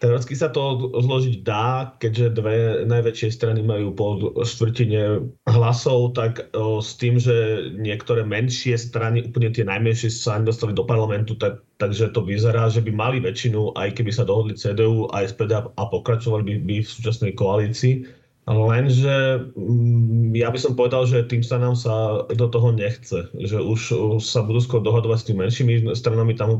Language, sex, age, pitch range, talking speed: Slovak, male, 30-49, 110-120 Hz, 165 wpm